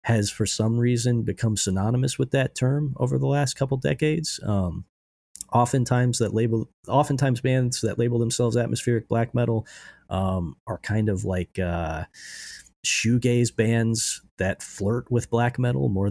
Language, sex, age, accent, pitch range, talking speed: English, male, 30-49, American, 95-120 Hz, 150 wpm